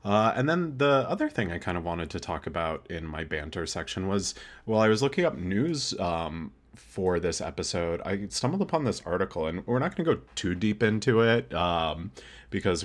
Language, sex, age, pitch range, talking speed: English, male, 30-49, 80-110 Hz, 210 wpm